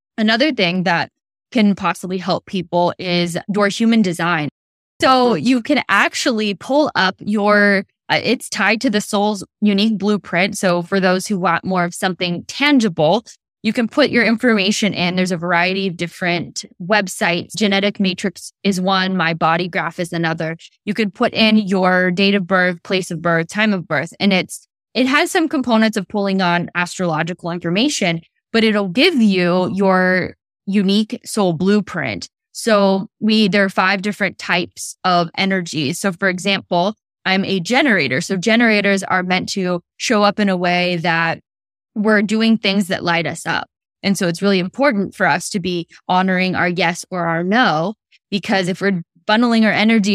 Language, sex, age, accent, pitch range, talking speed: English, female, 10-29, American, 180-210 Hz, 170 wpm